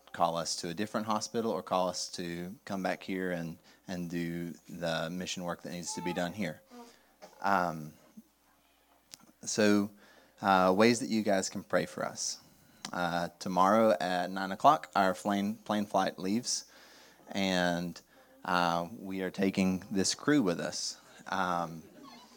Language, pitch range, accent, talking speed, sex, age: English, 85-100 Hz, American, 150 wpm, male, 30-49